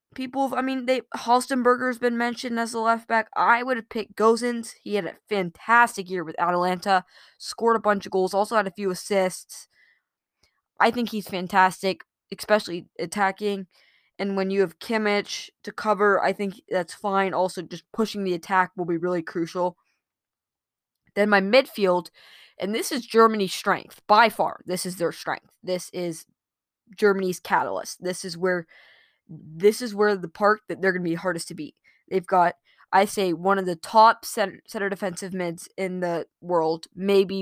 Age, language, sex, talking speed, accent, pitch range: 20-39, English, female, 180 wpm, American, 180-230 Hz